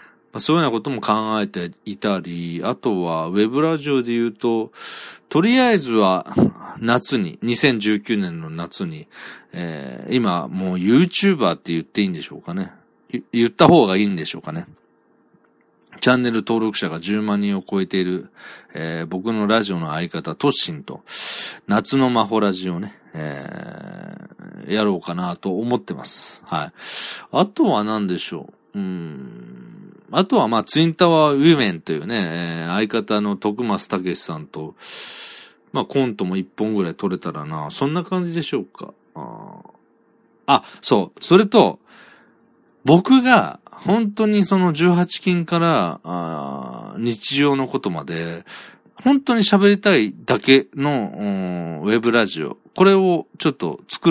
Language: Japanese